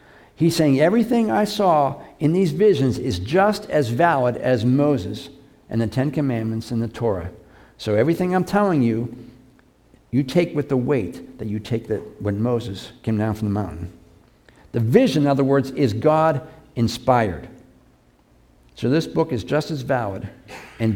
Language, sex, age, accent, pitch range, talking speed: English, male, 60-79, American, 105-145 Hz, 165 wpm